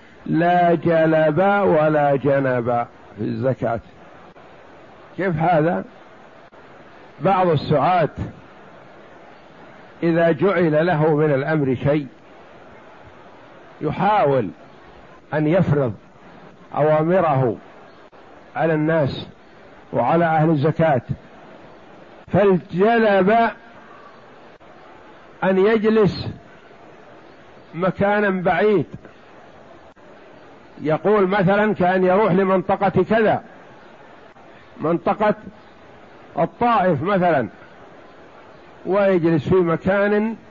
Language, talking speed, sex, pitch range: Arabic, 60 wpm, male, 155-200 Hz